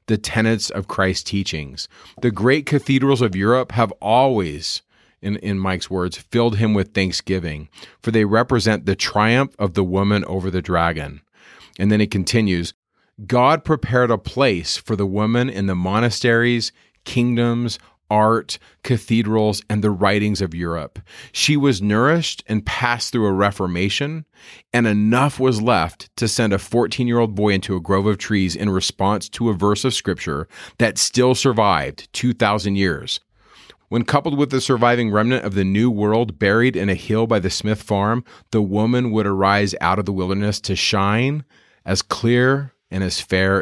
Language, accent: English, American